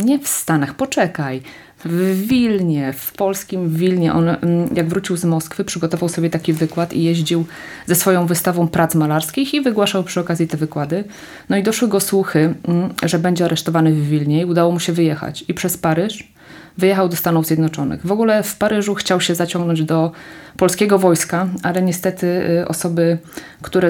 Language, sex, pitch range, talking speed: Polish, female, 165-190 Hz, 170 wpm